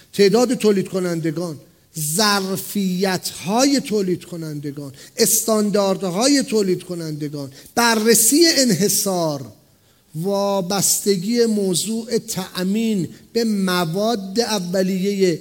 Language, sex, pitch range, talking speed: English, male, 185-240 Hz, 80 wpm